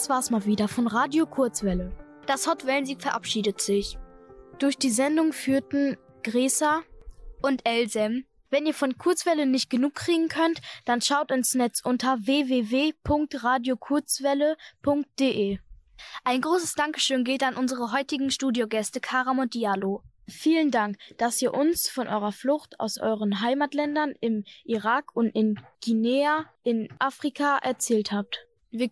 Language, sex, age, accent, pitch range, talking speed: German, female, 10-29, German, 225-275 Hz, 135 wpm